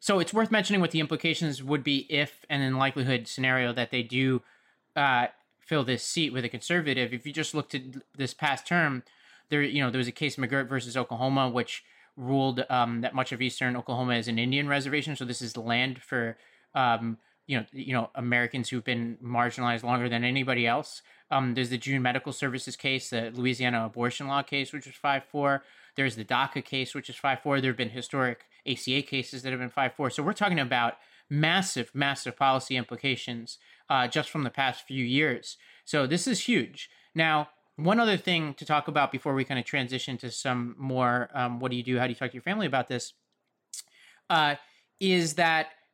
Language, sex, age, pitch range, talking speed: English, male, 30-49, 125-145 Hz, 205 wpm